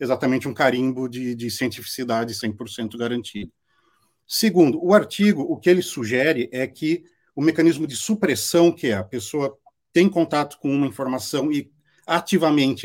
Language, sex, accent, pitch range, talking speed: Portuguese, male, Brazilian, 115-165 Hz, 150 wpm